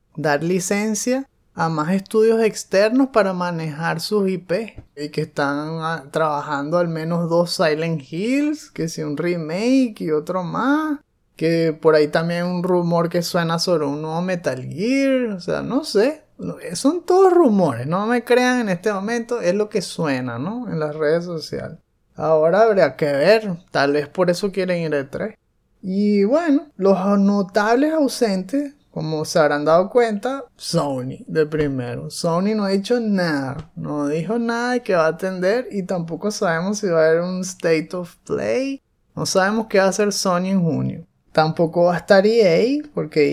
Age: 20-39